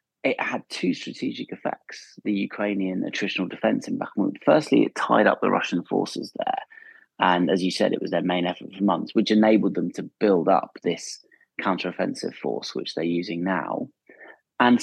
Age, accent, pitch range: 30-49, British, 90-130 Hz